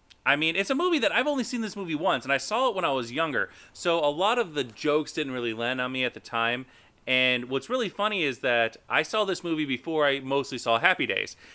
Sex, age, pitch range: male, 30-49, 110-140 Hz